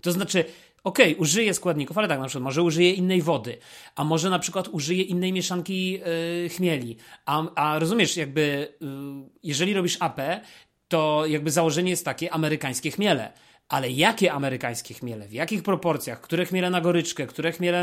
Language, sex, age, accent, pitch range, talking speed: Polish, male, 30-49, native, 140-175 Hz, 170 wpm